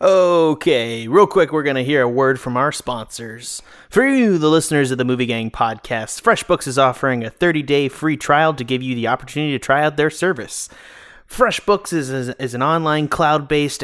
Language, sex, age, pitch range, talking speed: English, male, 30-49, 125-170 Hz, 190 wpm